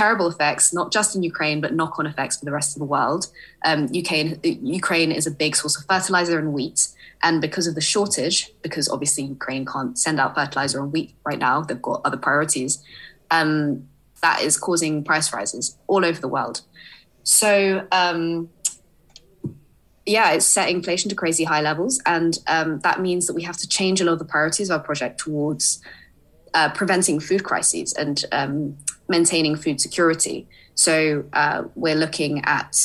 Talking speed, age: 180 wpm, 20-39